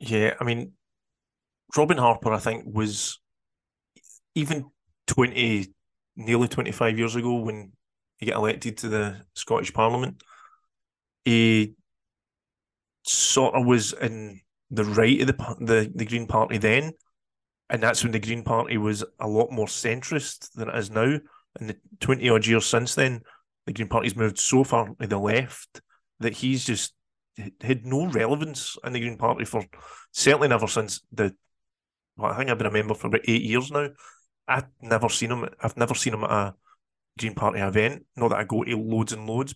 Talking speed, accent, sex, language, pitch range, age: 175 wpm, British, male, English, 110-130 Hz, 30-49